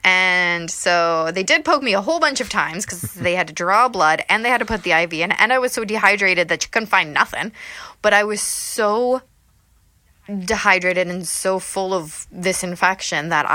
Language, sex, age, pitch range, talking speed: English, female, 20-39, 165-205 Hz, 210 wpm